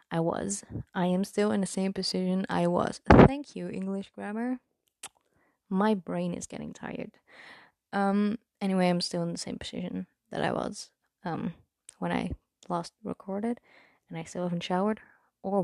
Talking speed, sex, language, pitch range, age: 160 wpm, female, English, 170-200 Hz, 20-39